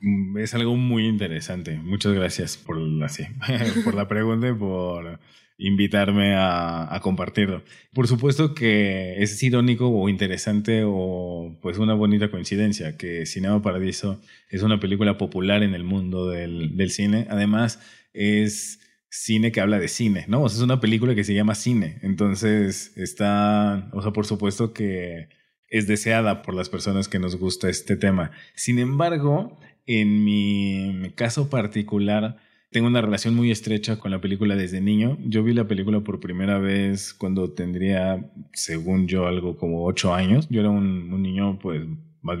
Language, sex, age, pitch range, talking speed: Spanish, male, 20-39, 95-110 Hz, 165 wpm